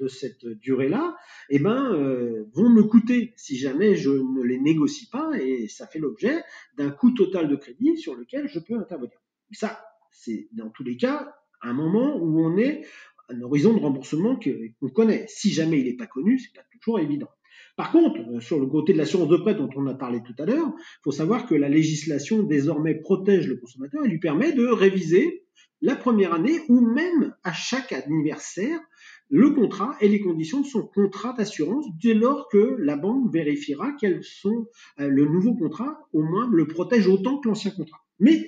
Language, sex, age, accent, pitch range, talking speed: French, male, 40-59, French, 150-250 Hz, 200 wpm